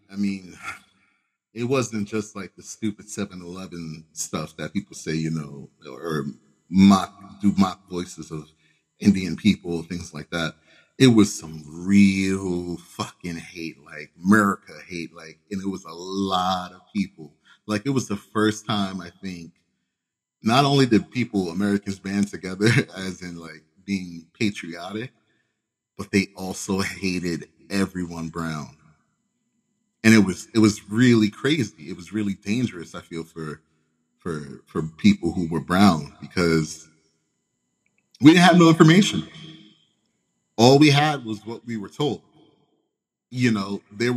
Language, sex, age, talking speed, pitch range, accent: English, male, 30-49, 145 wpm, 85-115 Hz, American